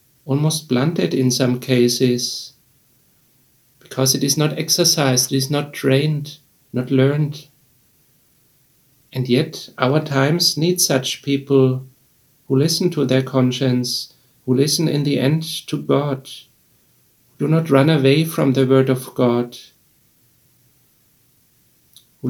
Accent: German